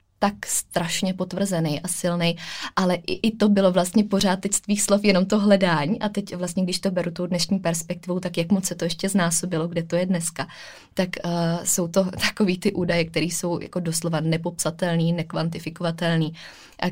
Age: 20-39